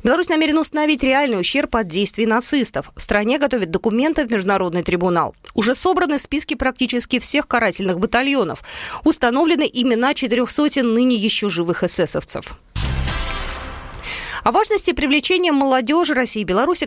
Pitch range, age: 190-285 Hz, 20-39